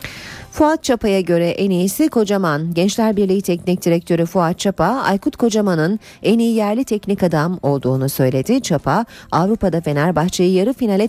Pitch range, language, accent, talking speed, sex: 150-210 Hz, Turkish, native, 140 wpm, female